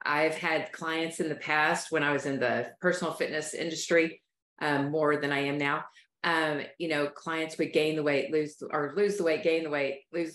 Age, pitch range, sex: 40-59, 145-180 Hz, female